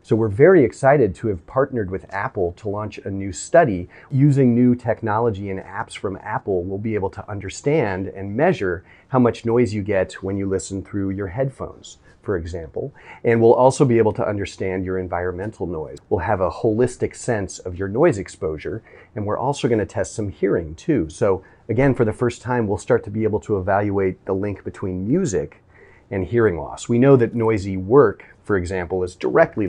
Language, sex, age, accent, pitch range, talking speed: English, male, 30-49, American, 95-120 Hz, 195 wpm